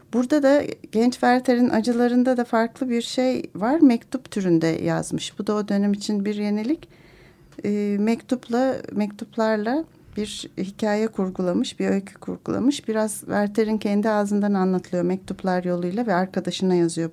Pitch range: 185-230 Hz